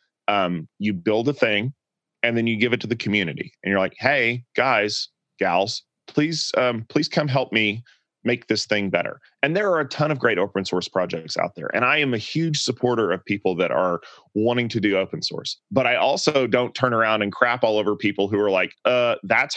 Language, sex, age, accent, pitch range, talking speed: English, male, 30-49, American, 95-120 Hz, 220 wpm